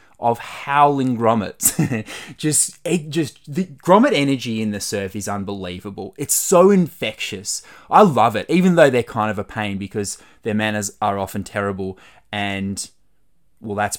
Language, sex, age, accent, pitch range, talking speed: English, male, 20-39, Australian, 105-155 Hz, 155 wpm